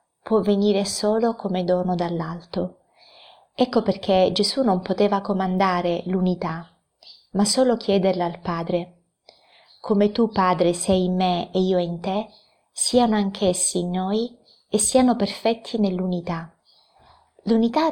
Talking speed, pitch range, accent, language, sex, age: 125 wpm, 180-210 Hz, native, Italian, female, 20-39